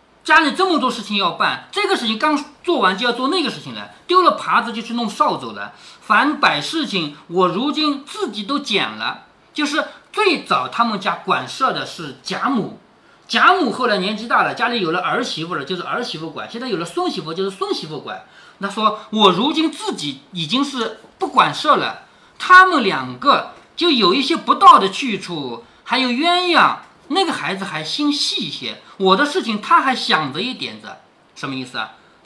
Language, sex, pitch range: Chinese, male, 200-315 Hz